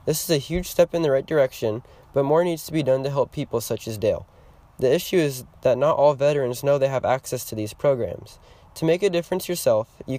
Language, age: English, 20-39